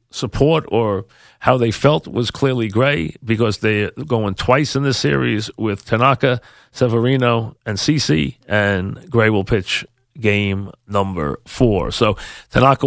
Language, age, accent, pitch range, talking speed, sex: English, 40-59, American, 105-125 Hz, 135 wpm, male